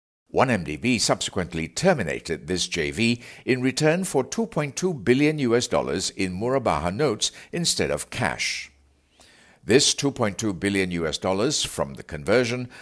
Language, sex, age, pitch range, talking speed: English, male, 60-79, 90-135 Hz, 120 wpm